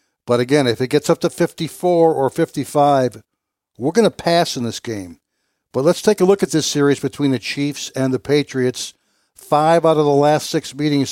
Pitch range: 130-160 Hz